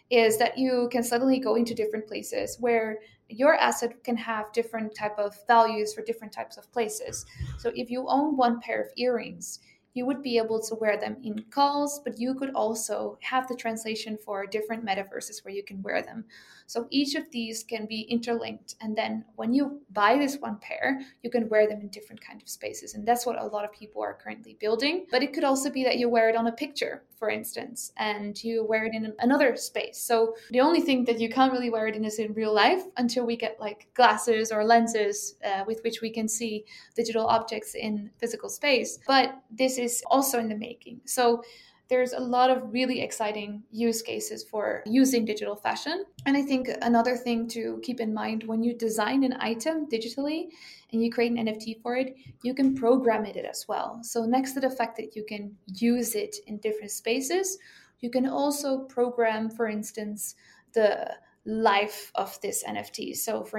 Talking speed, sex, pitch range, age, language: 205 wpm, female, 220-255 Hz, 20-39, English